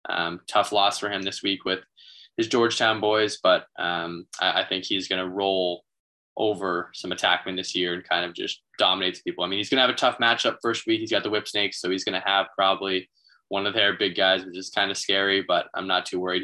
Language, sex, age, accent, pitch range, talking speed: English, male, 10-29, American, 90-110 Hz, 250 wpm